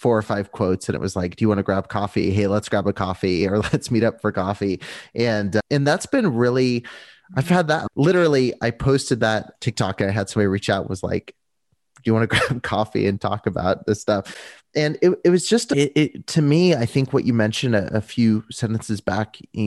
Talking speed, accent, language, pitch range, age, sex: 230 wpm, American, English, 100-120 Hz, 30-49, male